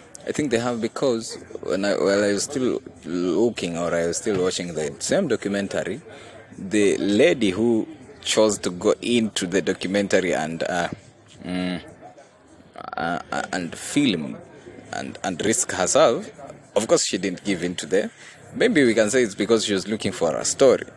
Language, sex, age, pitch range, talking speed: English, male, 20-39, 95-120 Hz, 170 wpm